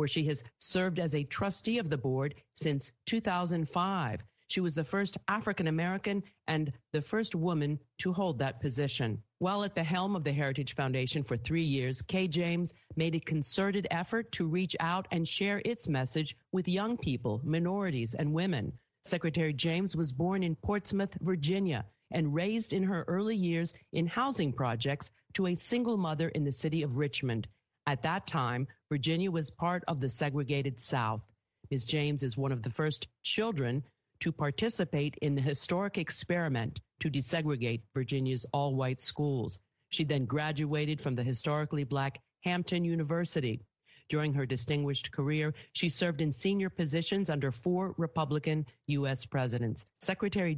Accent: American